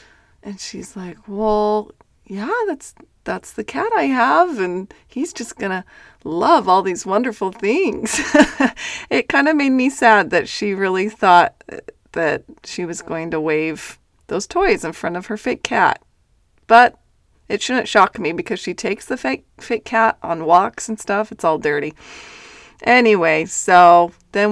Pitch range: 170-220 Hz